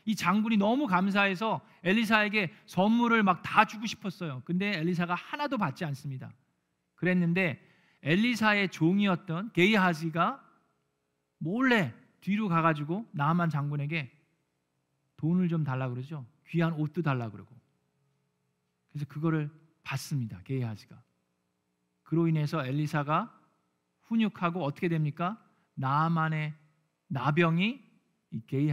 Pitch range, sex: 135-200 Hz, male